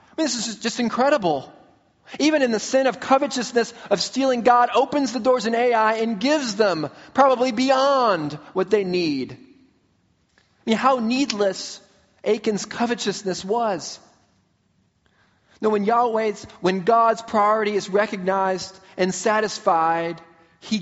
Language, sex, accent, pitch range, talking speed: English, male, American, 145-220 Hz, 135 wpm